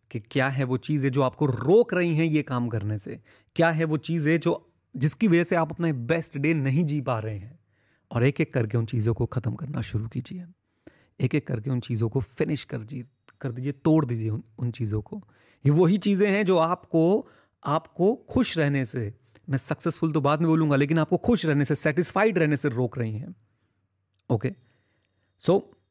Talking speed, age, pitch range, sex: 195 wpm, 30-49, 125-155 Hz, male